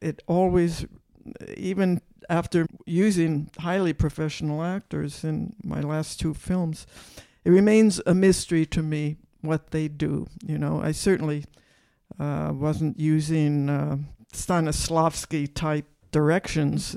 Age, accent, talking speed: 60-79, American, 115 wpm